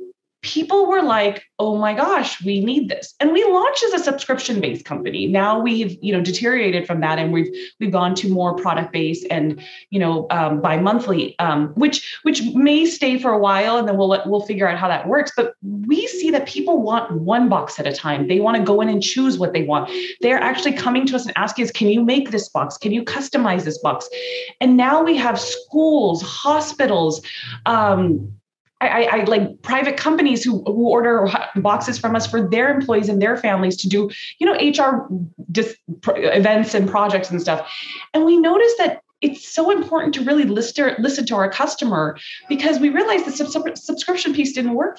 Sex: female